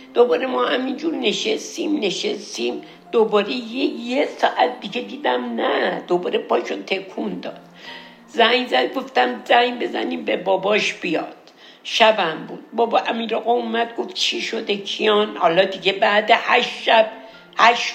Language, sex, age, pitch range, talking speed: Persian, female, 60-79, 220-280 Hz, 135 wpm